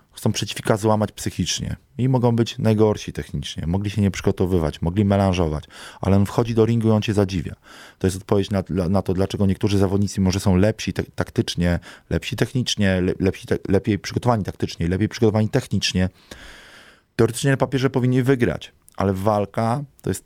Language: Polish